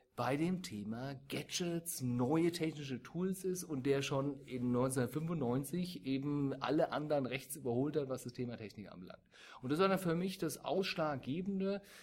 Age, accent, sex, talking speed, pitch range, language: 40-59, German, male, 160 wpm, 125-155 Hz, German